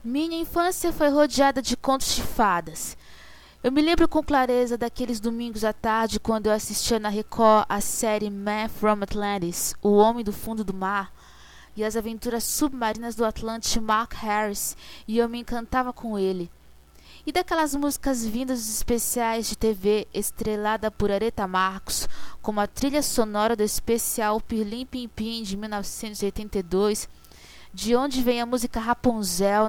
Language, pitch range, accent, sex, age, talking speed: English, 205-245 Hz, Brazilian, female, 20-39, 150 wpm